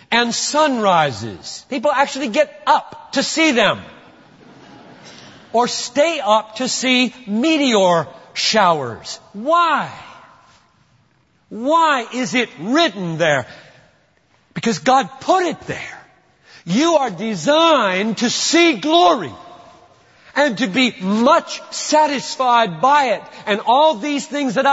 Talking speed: 110 wpm